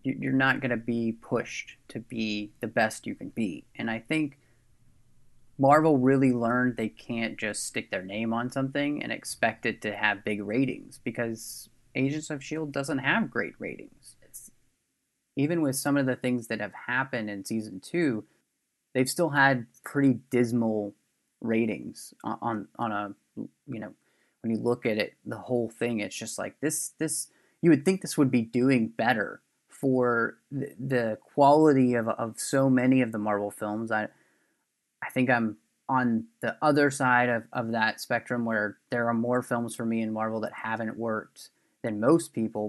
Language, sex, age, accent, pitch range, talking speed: English, male, 20-39, American, 115-135 Hz, 175 wpm